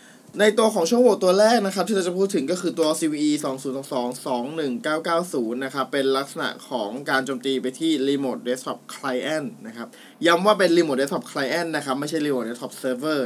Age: 20-39